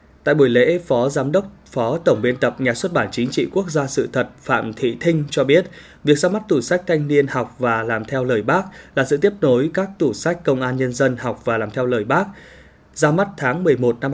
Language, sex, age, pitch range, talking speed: Vietnamese, male, 20-39, 120-155 Hz, 250 wpm